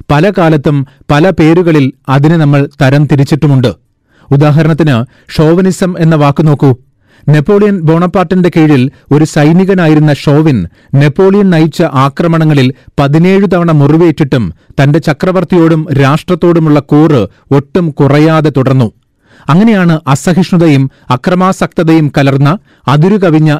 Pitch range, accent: 140-170 Hz, native